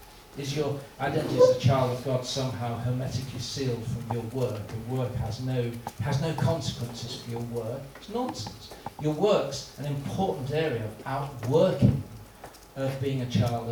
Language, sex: Danish, male